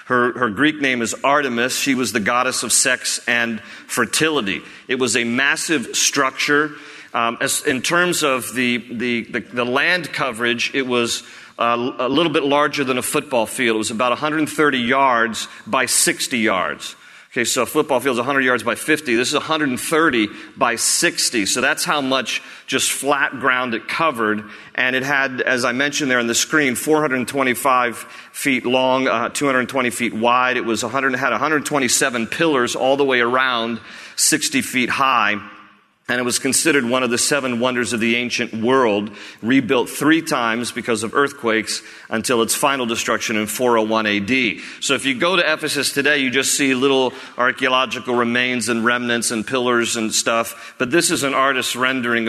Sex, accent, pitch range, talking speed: male, American, 115-135 Hz, 175 wpm